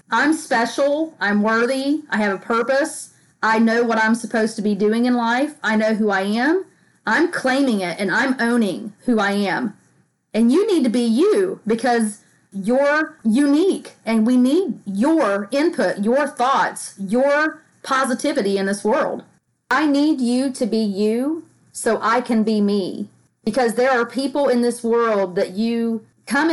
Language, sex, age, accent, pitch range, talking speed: English, female, 40-59, American, 185-245 Hz, 165 wpm